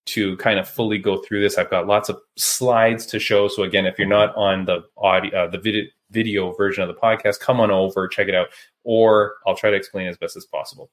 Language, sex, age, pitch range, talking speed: English, male, 20-39, 95-130 Hz, 240 wpm